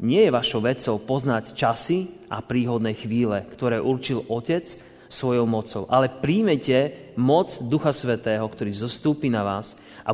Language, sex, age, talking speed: Slovak, male, 30-49, 140 wpm